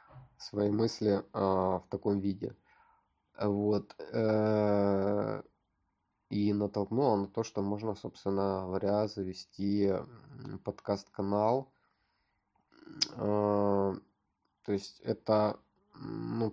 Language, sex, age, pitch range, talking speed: Russian, male, 20-39, 100-110 Hz, 80 wpm